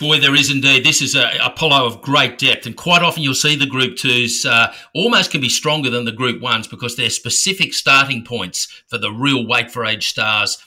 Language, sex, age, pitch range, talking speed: English, male, 50-69, 115-145 Hz, 215 wpm